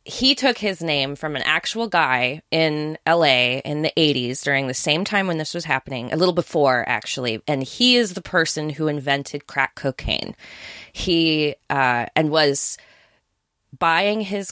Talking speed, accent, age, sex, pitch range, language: 165 wpm, American, 20-39, female, 140-180 Hz, English